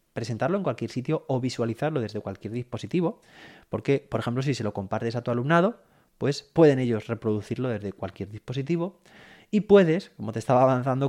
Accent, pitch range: Spanish, 110-140 Hz